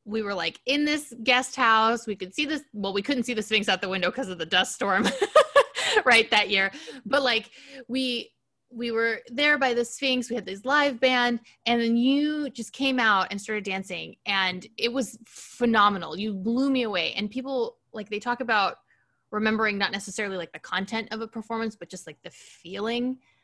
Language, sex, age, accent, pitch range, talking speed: English, female, 20-39, American, 205-265 Hz, 200 wpm